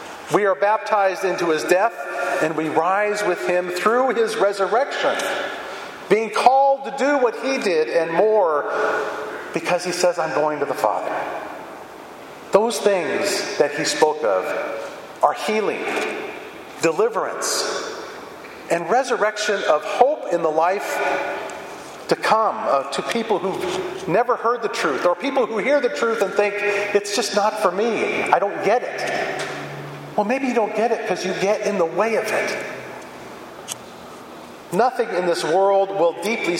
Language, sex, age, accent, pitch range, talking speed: English, male, 40-59, American, 175-255 Hz, 155 wpm